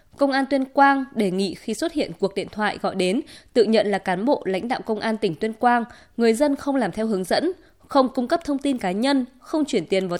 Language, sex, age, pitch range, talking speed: Vietnamese, female, 20-39, 195-265 Hz, 260 wpm